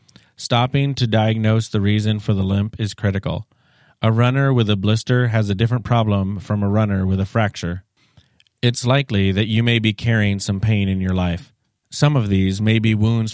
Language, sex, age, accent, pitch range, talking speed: English, male, 30-49, American, 100-120 Hz, 195 wpm